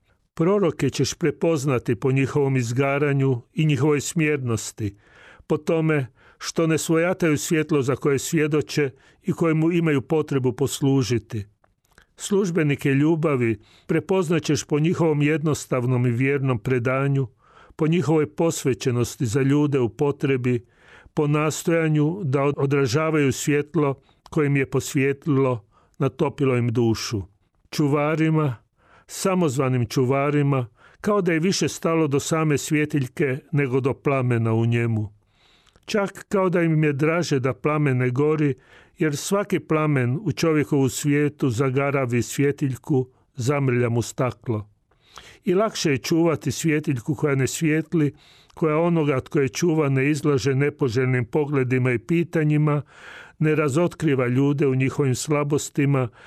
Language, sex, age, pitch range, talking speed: Croatian, male, 40-59, 130-155 Hz, 120 wpm